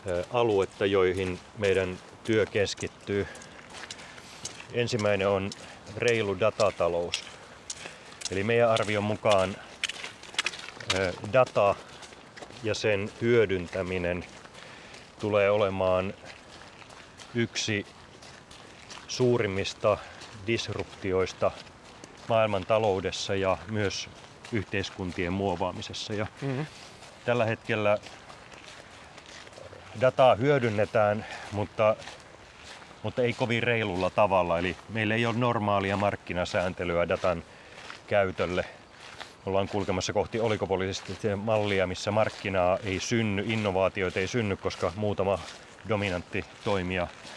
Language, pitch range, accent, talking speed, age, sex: Finnish, 95-110 Hz, native, 75 wpm, 30-49, male